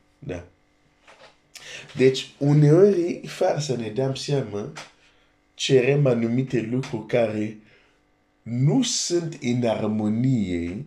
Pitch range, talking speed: 85-125 Hz, 90 wpm